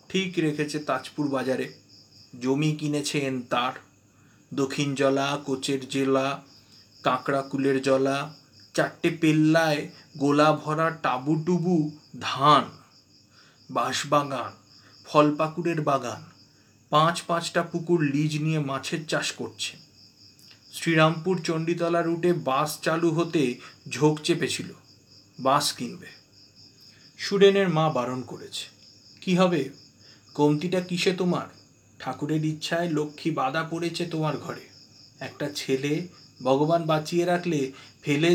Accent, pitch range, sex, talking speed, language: native, 130-170 Hz, male, 100 wpm, Bengali